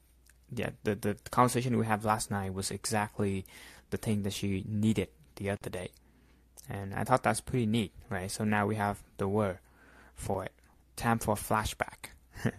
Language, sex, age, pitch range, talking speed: English, male, 20-39, 90-110 Hz, 175 wpm